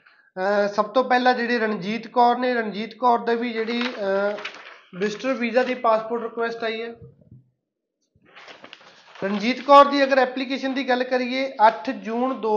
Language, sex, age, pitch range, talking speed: Punjabi, male, 20-39, 215-240 Hz, 150 wpm